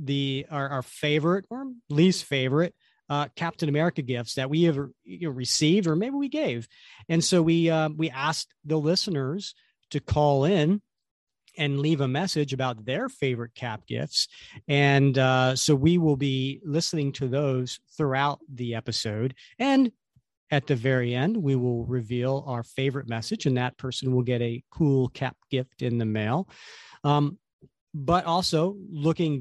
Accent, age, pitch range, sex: American, 40-59, 130-160 Hz, male